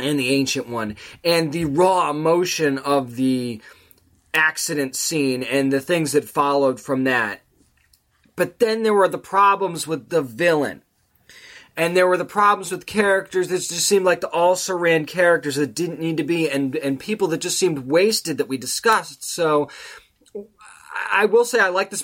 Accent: American